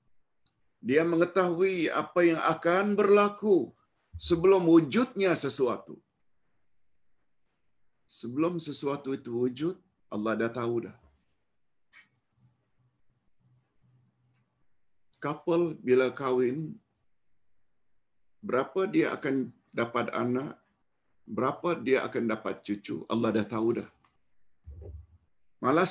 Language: Malayalam